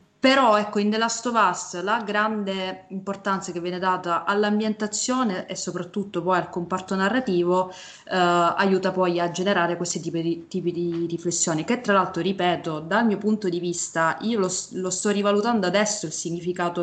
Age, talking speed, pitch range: 20-39, 170 wpm, 175-200 Hz